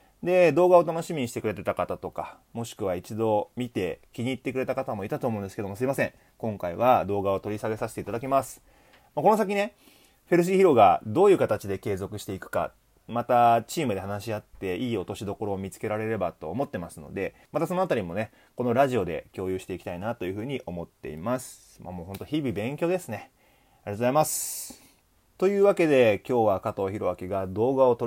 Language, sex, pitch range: Japanese, male, 95-130 Hz